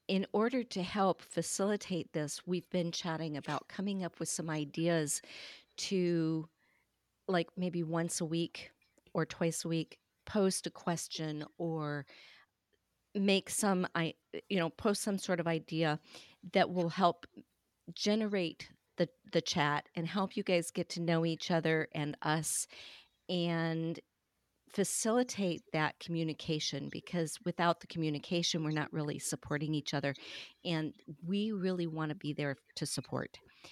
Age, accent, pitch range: 50-69, American, 160-195 Hz